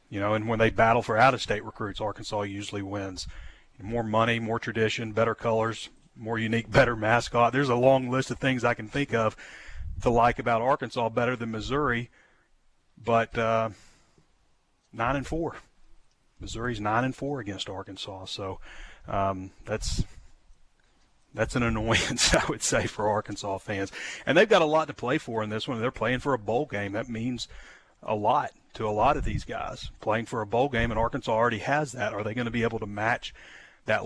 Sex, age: male, 30-49